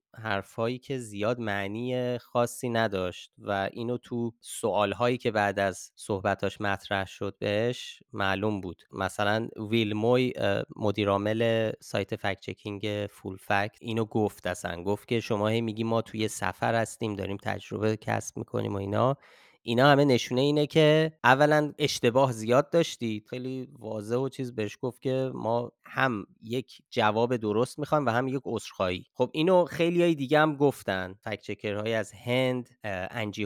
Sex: male